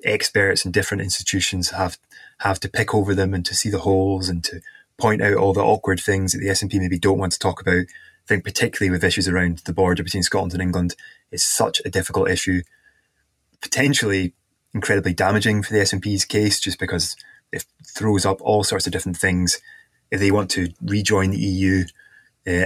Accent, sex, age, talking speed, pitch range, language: British, male, 20-39, 200 wpm, 90-110 Hz, English